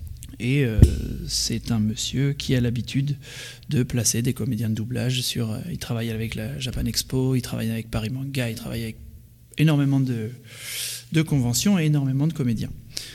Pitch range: 120-145 Hz